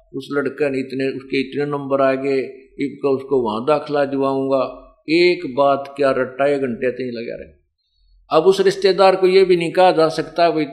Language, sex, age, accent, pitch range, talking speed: Hindi, male, 50-69, native, 135-185 Hz, 185 wpm